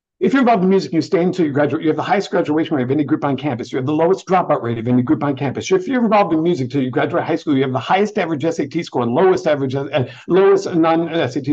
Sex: male